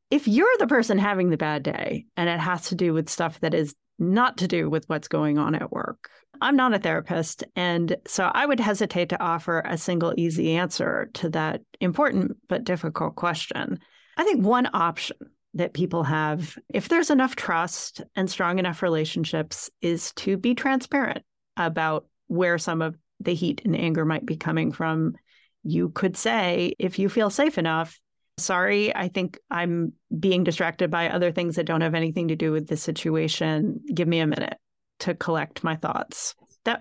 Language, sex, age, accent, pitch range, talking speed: English, female, 40-59, American, 165-205 Hz, 185 wpm